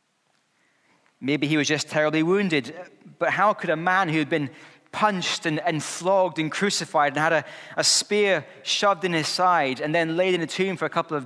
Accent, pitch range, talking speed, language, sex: British, 135-170 Hz, 210 wpm, English, male